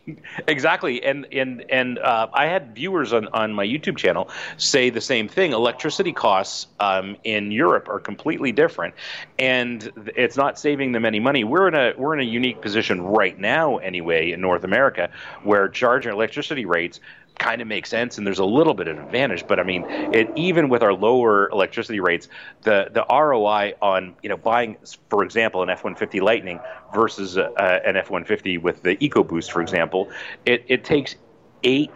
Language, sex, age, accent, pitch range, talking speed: English, male, 30-49, American, 95-120 Hz, 180 wpm